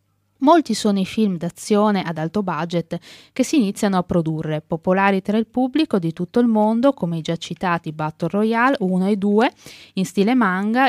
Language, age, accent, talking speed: Italian, 20-39, native, 180 wpm